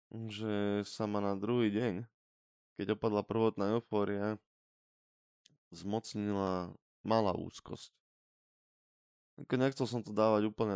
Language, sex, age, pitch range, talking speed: Slovak, male, 10-29, 100-115 Hz, 105 wpm